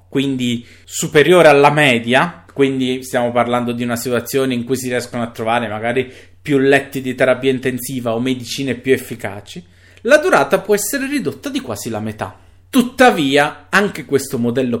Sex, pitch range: male, 115-155 Hz